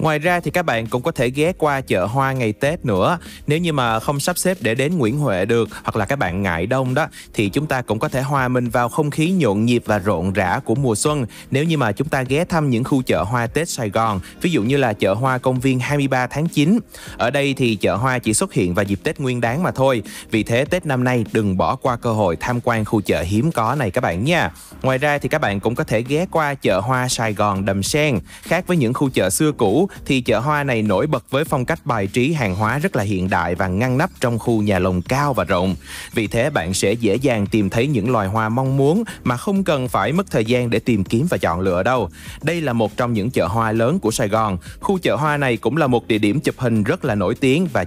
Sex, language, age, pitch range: male, Vietnamese, 20-39, 110-145 Hz